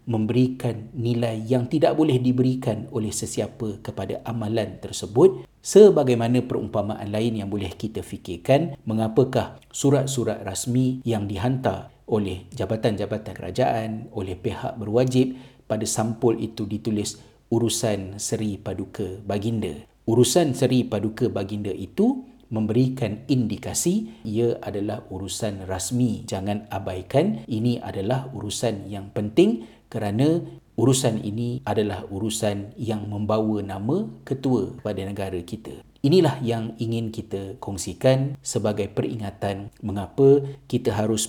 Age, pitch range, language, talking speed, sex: 50-69, 105-125 Hz, Malay, 110 wpm, male